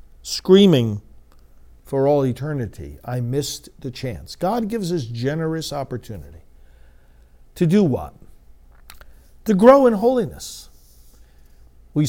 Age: 50-69